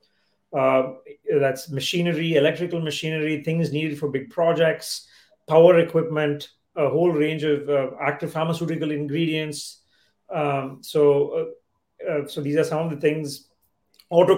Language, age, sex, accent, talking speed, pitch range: English, 30-49, male, Indian, 135 wpm, 140-160 Hz